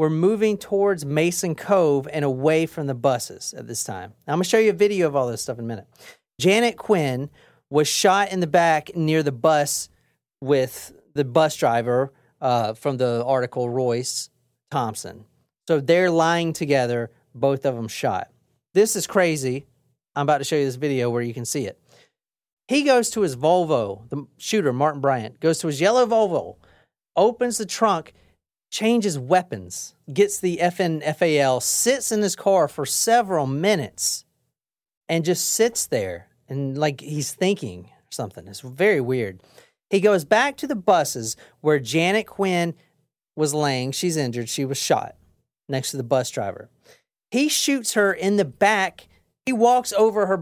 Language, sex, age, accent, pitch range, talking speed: English, male, 40-59, American, 130-195 Hz, 170 wpm